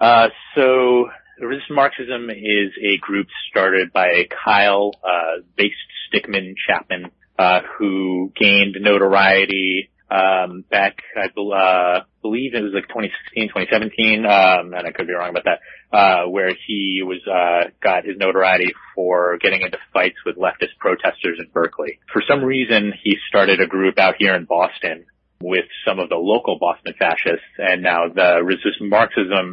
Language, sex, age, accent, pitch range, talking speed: English, male, 30-49, American, 90-105 Hz, 155 wpm